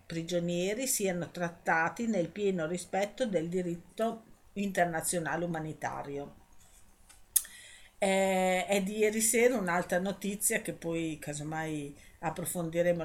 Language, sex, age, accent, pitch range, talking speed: Italian, female, 50-69, native, 160-200 Hz, 90 wpm